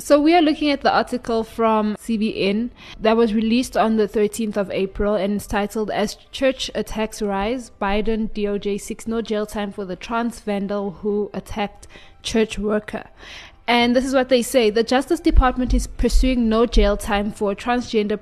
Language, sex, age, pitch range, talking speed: English, female, 20-39, 205-230 Hz, 180 wpm